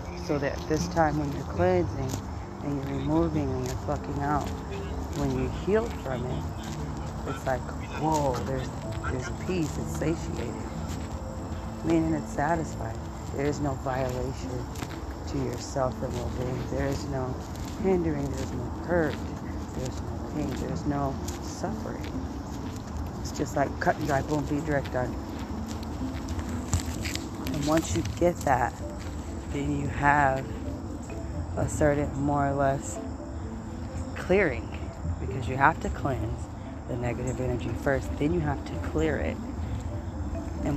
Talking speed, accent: 135 wpm, American